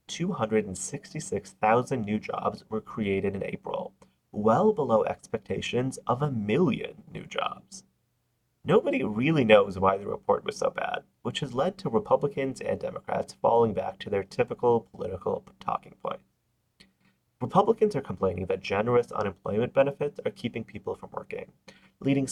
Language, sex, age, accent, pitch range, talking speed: English, male, 30-49, American, 105-155 Hz, 140 wpm